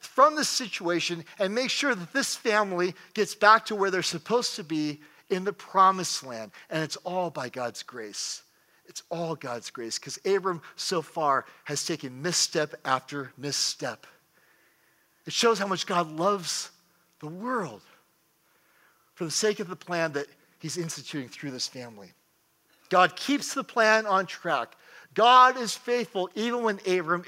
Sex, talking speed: male, 160 wpm